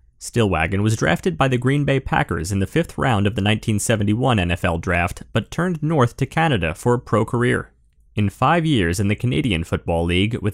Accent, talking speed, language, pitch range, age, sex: American, 200 wpm, English, 100-145 Hz, 30-49, male